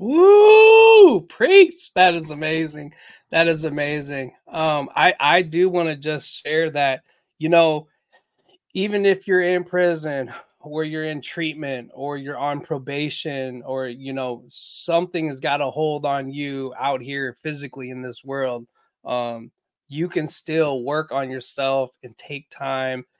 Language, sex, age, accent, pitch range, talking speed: English, male, 20-39, American, 135-160 Hz, 150 wpm